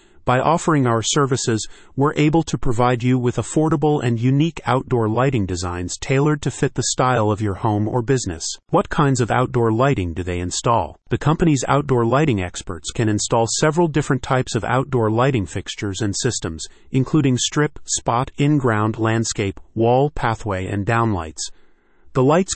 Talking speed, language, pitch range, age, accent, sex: 160 wpm, English, 105-135 Hz, 40-59, American, male